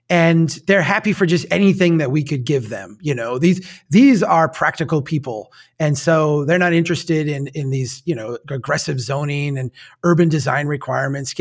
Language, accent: English, American